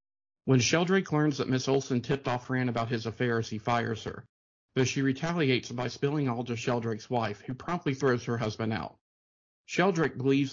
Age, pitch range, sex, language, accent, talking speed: 50-69, 115-135 Hz, male, English, American, 180 wpm